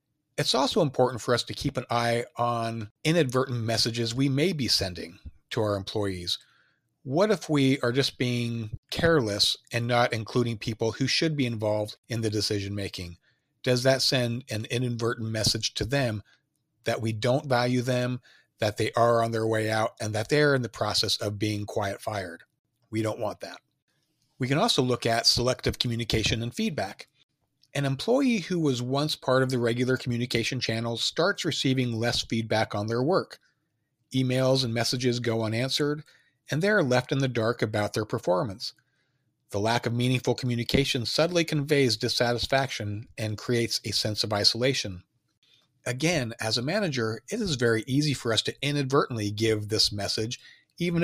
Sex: male